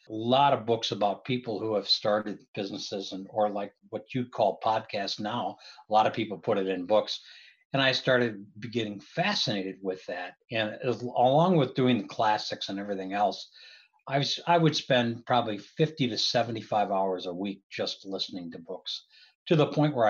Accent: American